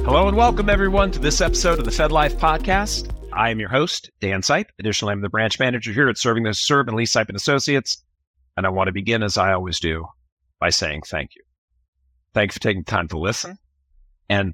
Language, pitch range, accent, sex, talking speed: English, 90-115 Hz, American, male, 225 wpm